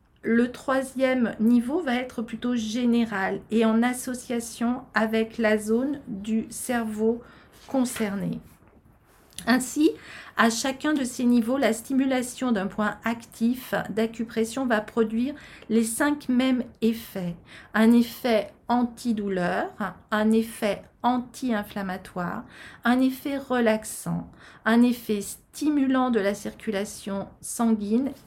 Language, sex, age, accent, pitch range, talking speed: French, female, 40-59, French, 210-245 Hz, 105 wpm